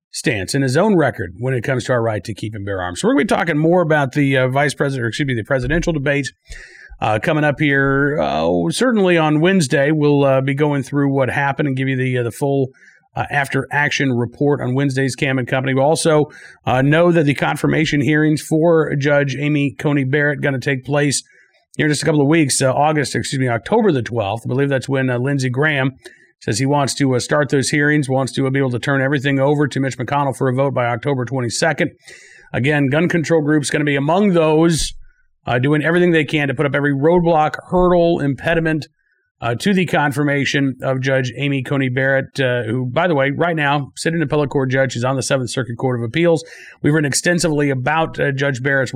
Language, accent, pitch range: English, American, 130-155 Hz